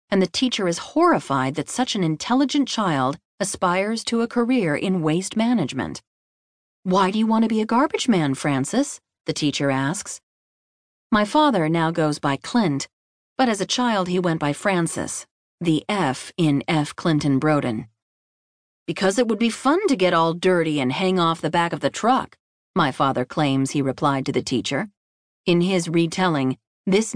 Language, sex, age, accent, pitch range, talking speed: English, female, 40-59, American, 150-225 Hz, 175 wpm